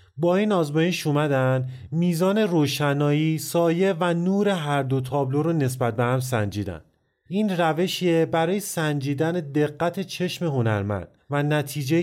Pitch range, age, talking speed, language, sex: 130-165 Hz, 30-49, 130 wpm, English, male